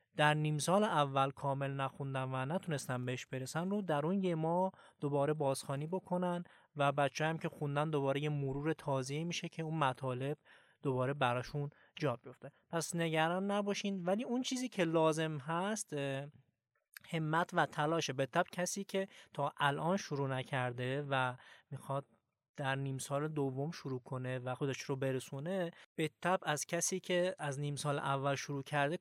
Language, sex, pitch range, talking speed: Persian, male, 135-165 Hz, 160 wpm